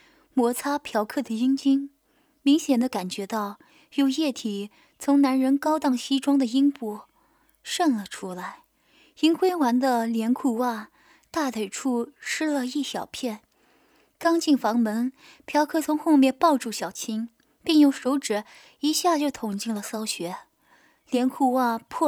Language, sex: Chinese, female